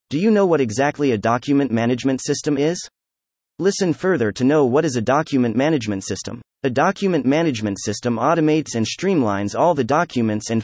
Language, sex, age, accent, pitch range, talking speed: English, male, 30-49, American, 105-155 Hz, 175 wpm